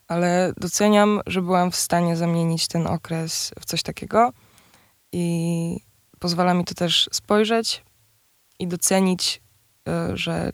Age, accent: 20-39, native